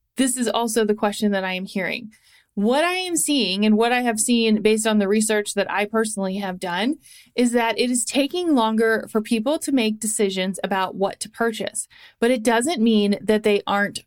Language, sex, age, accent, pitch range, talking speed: English, female, 30-49, American, 210-270 Hz, 210 wpm